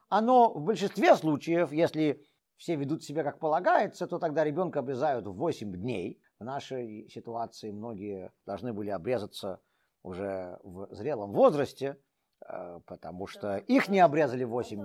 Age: 50-69